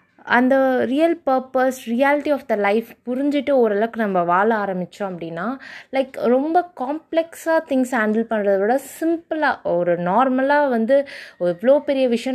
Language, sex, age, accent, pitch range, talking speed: Tamil, female, 20-39, native, 220-285 Hz, 130 wpm